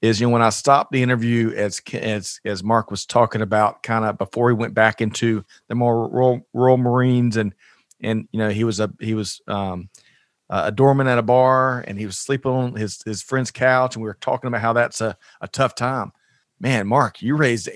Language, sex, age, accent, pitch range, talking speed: English, male, 40-59, American, 105-125 Hz, 225 wpm